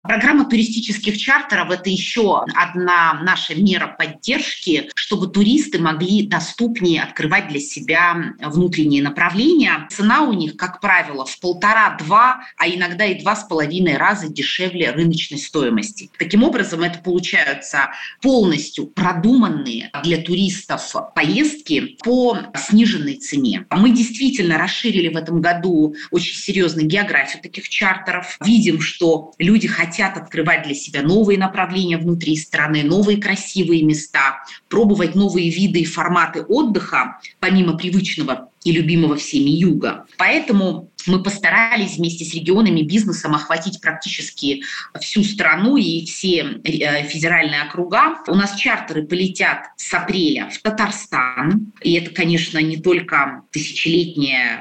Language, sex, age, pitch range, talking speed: Russian, female, 30-49, 160-205 Hz, 125 wpm